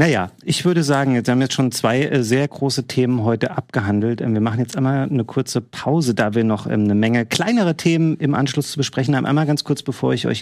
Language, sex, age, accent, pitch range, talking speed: German, male, 40-59, German, 105-135 Hz, 225 wpm